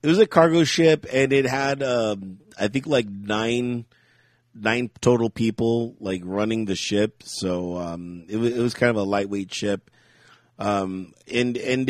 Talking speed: 165 wpm